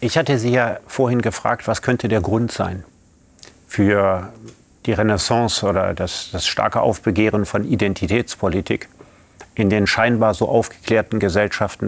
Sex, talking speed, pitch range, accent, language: male, 135 wpm, 100-115 Hz, German, German